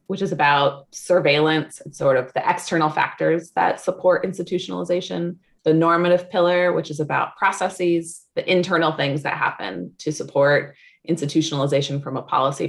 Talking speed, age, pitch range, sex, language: 145 wpm, 20-39, 145-175 Hz, female, English